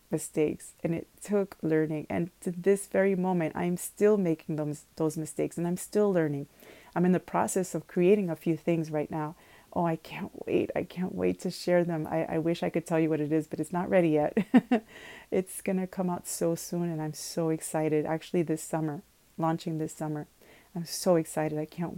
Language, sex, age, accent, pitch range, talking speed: English, female, 30-49, American, 155-185 Hz, 215 wpm